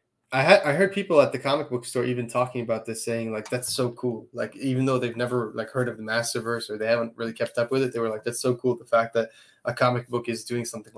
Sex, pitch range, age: male, 110-125 Hz, 20-39